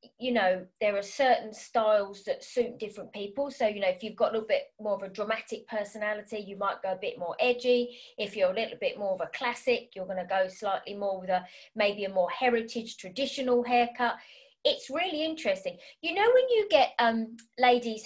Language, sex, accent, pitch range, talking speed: English, female, British, 210-275 Hz, 215 wpm